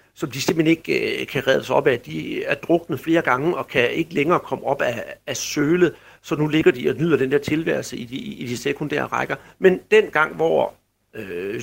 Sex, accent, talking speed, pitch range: male, native, 230 wpm, 145-190 Hz